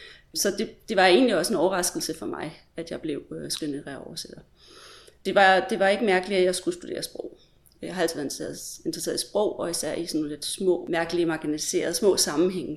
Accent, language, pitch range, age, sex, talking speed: native, Danish, 170-210 Hz, 30-49, female, 200 wpm